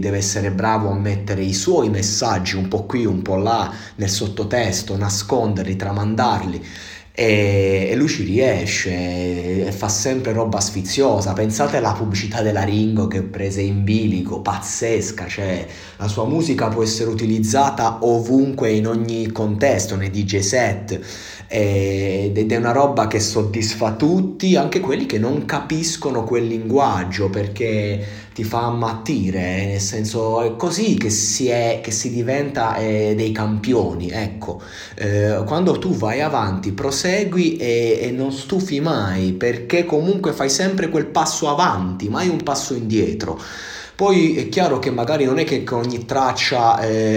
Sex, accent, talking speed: male, native, 145 wpm